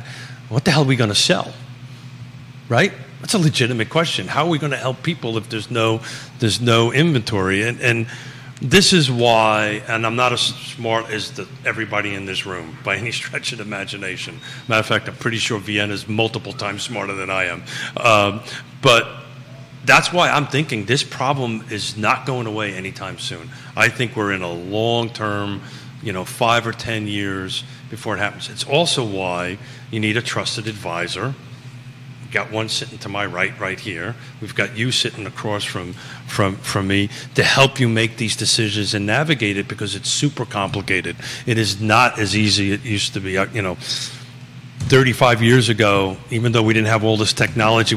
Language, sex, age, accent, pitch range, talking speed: English, male, 40-59, American, 105-130 Hz, 190 wpm